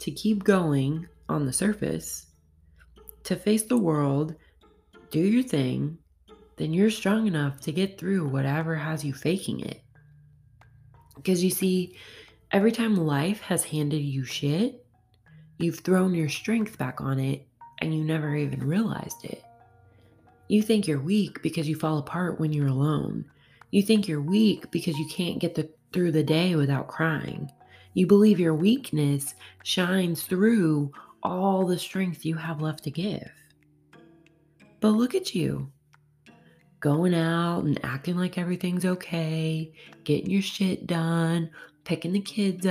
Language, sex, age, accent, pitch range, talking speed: English, female, 20-39, American, 145-195 Hz, 145 wpm